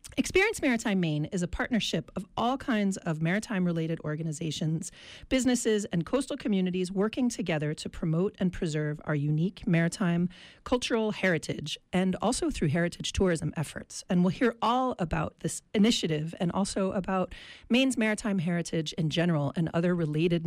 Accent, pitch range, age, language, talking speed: American, 165-215 Hz, 40-59, English, 150 wpm